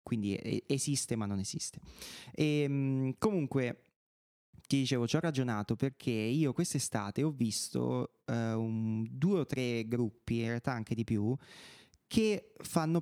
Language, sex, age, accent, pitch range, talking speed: Italian, male, 30-49, native, 115-150 Hz, 125 wpm